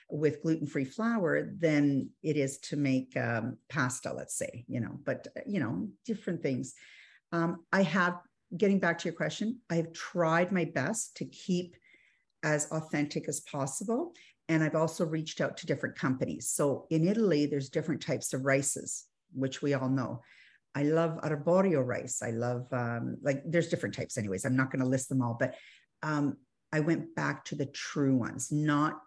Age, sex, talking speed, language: 50-69, female, 180 wpm, English